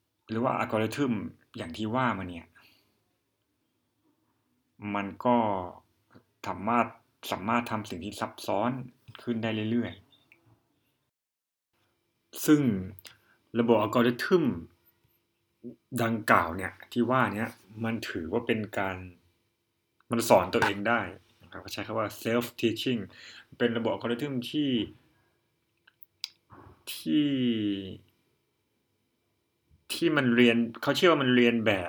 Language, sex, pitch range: Thai, male, 105-125 Hz